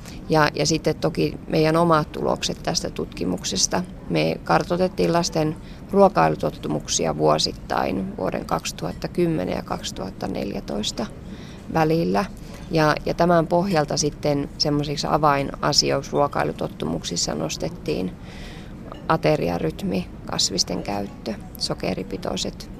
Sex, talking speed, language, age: female, 80 wpm, Finnish, 20-39